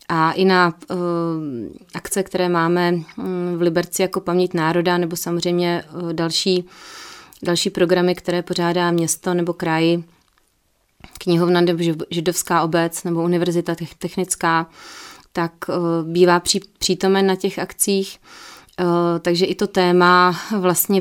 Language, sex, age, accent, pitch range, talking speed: Czech, female, 30-49, native, 165-185 Hz, 110 wpm